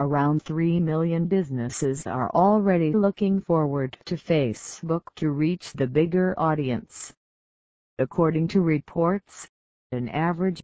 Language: English